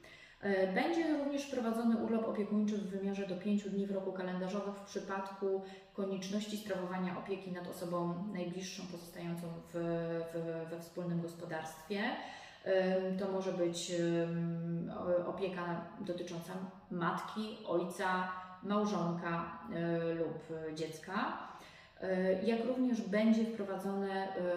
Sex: female